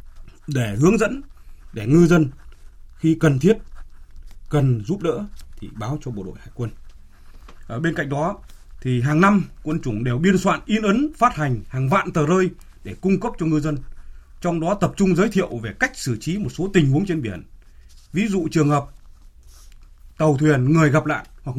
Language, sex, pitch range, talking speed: Vietnamese, male, 105-165 Hz, 195 wpm